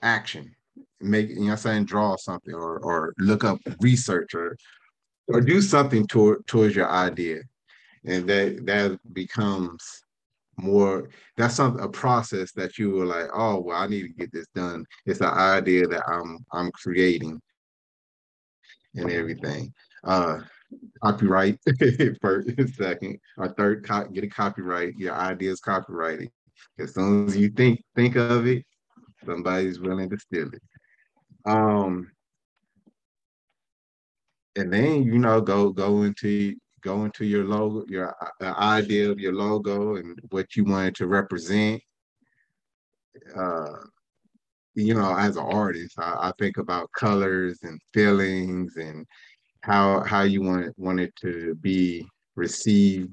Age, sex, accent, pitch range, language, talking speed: 30-49, male, American, 90-105 Hz, English, 140 wpm